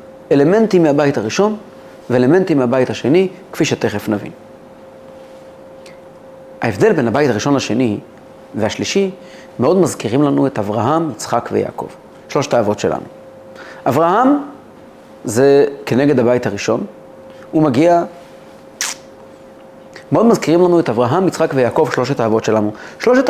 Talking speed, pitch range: 110 wpm, 135-195 Hz